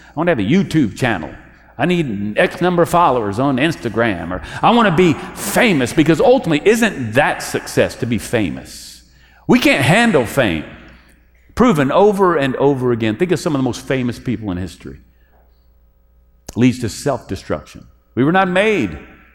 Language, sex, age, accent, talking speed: English, male, 50-69, American, 175 wpm